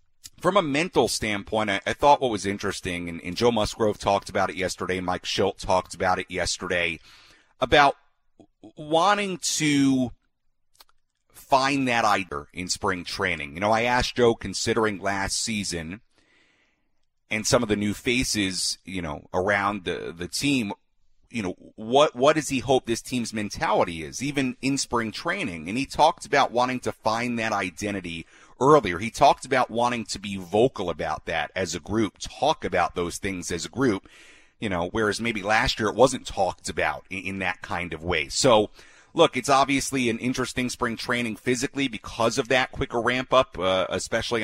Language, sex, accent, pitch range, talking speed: English, male, American, 95-130 Hz, 175 wpm